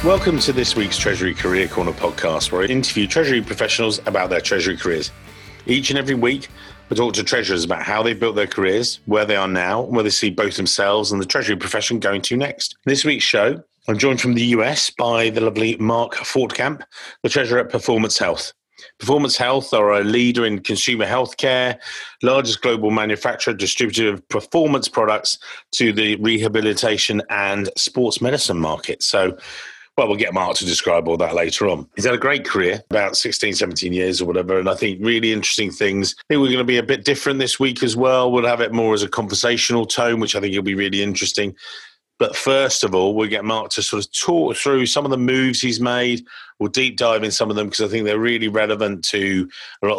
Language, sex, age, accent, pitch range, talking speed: English, male, 40-59, British, 100-125 Hz, 215 wpm